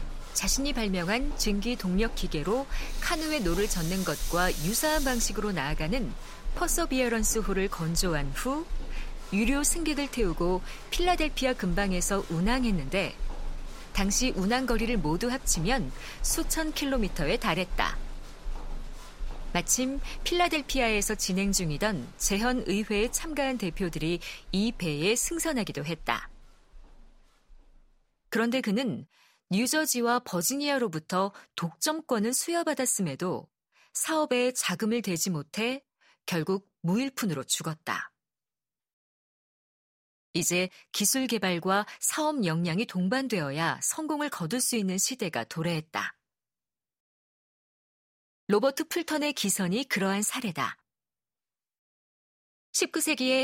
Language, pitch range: Korean, 180-260 Hz